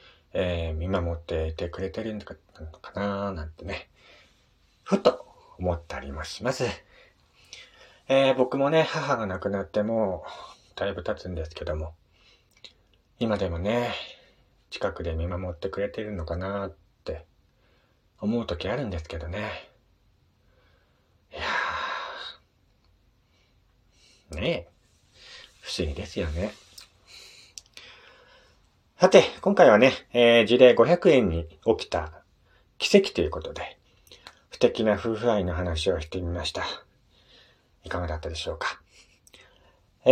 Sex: male